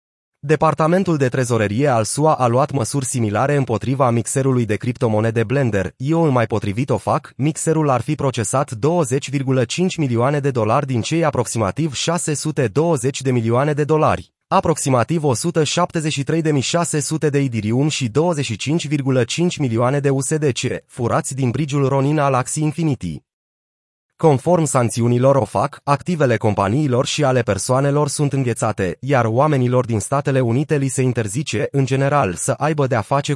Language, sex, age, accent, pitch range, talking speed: Romanian, male, 30-49, native, 120-150 Hz, 140 wpm